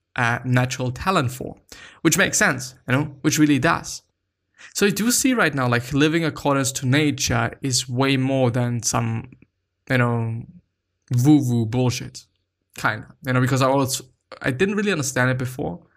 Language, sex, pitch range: English, male, 125-150 Hz